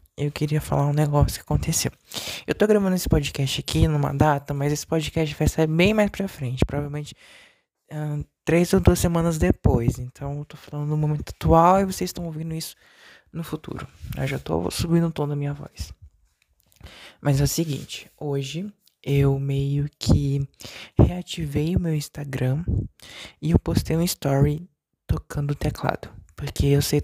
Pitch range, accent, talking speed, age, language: 140-165 Hz, Brazilian, 170 wpm, 20-39, Portuguese